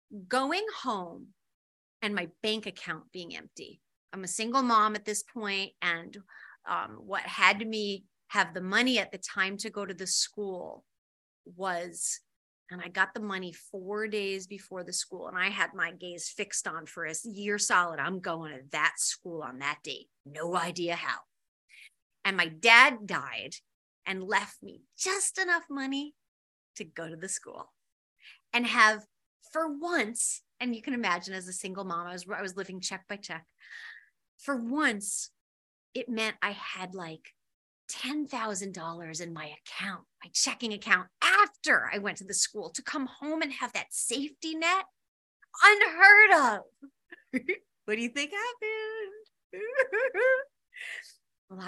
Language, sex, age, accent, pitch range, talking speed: English, female, 30-49, American, 185-285 Hz, 155 wpm